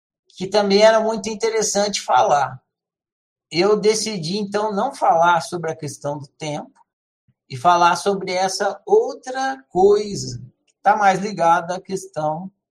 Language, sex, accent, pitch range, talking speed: Portuguese, male, Brazilian, 155-205 Hz, 130 wpm